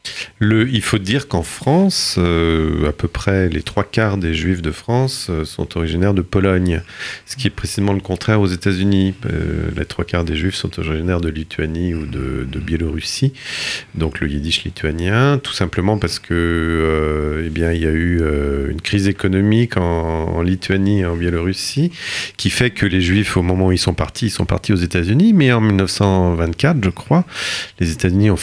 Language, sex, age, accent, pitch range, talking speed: French, male, 40-59, French, 85-105 Hz, 205 wpm